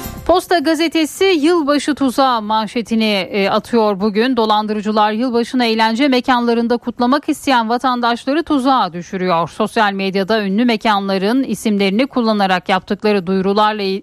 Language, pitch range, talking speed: Turkish, 190-240 Hz, 105 wpm